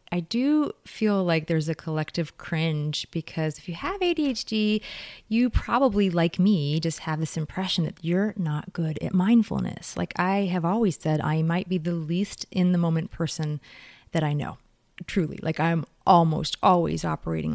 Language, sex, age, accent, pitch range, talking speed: English, female, 30-49, American, 160-210 Hz, 170 wpm